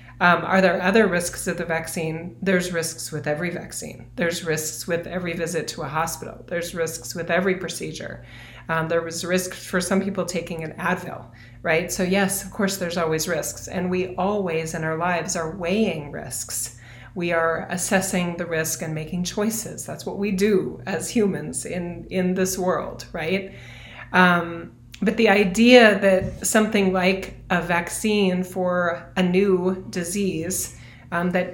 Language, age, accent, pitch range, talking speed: English, 30-49, American, 165-195 Hz, 165 wpm